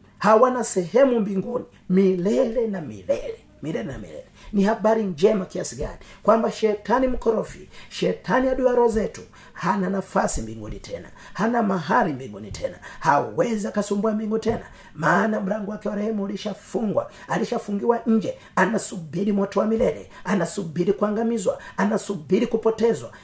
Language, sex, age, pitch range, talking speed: Swahili, male, 40-59, 185-220 Hz, 125 wpm